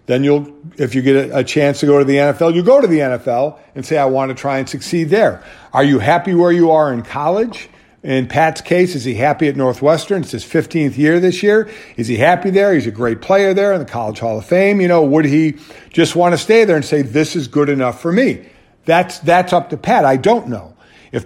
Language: English